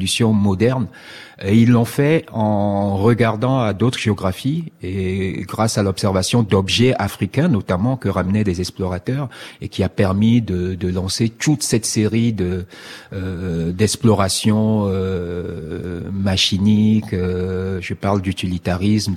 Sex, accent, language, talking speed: male, French, French, 120 wpm